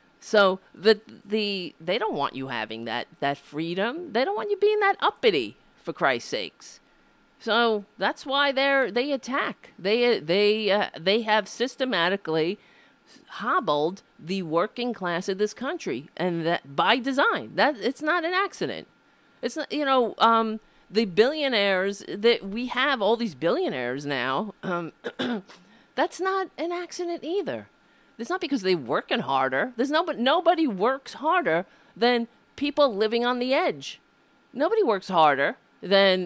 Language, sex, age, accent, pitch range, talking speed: English, female, 40-59, American, 185-270 Hz, 150 wpm